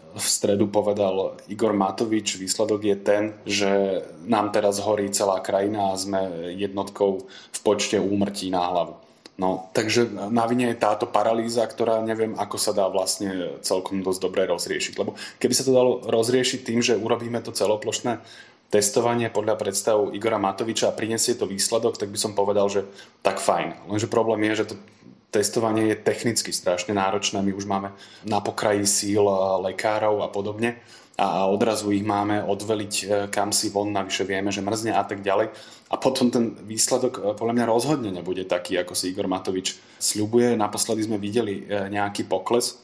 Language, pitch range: Slovak, 100-115 Hz